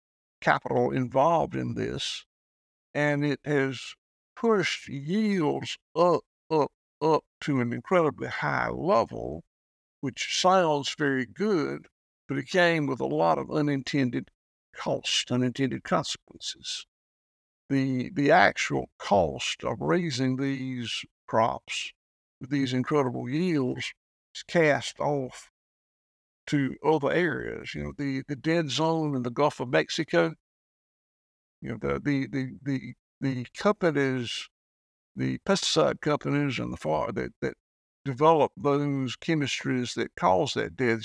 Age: 60-79